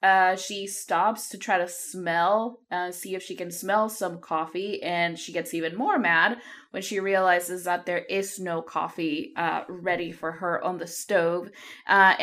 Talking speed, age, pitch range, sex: 180 wpm, 20-39, 180-210 Hz, female